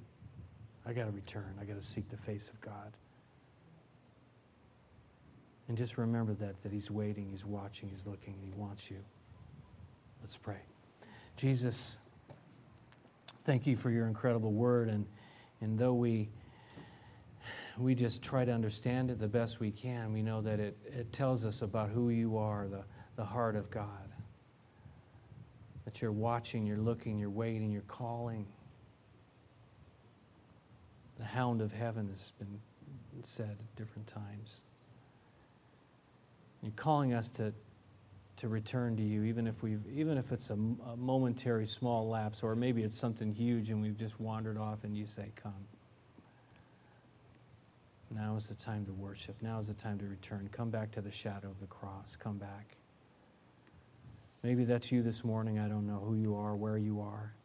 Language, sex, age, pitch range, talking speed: English, male, 40-59, 105-120 Hz, 160 wpm